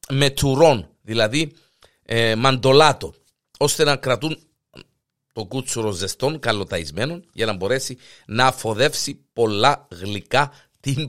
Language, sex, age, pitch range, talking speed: Greek, male, 50-69, 95-145 Hz, 110 wpm